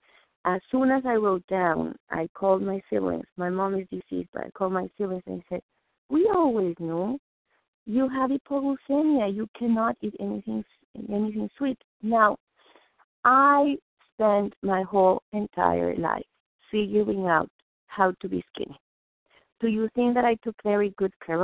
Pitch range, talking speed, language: 165-210 Hz, 155 wpm, English